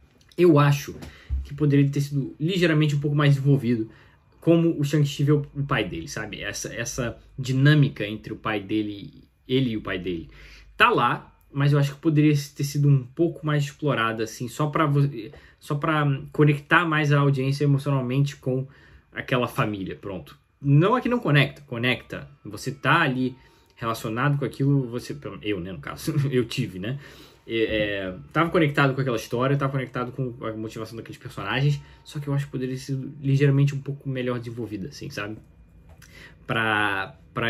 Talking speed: 175 wpm